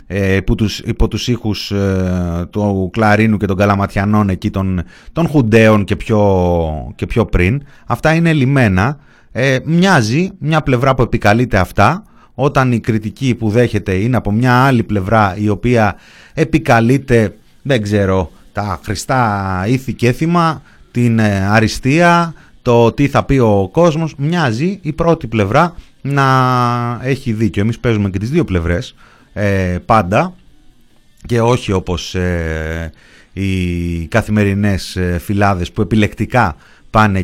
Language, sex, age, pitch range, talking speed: Greek, male, 30-49, 95-120 Hz, 130 wpm